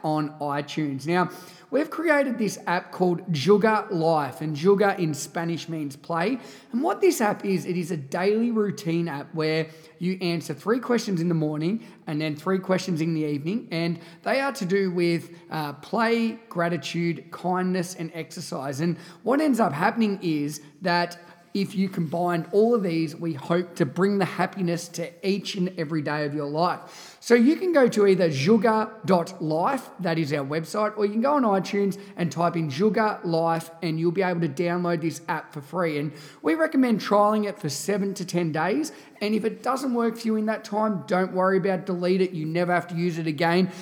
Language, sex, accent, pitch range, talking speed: English, male, Australian, 165-205 Hz, 195 wpm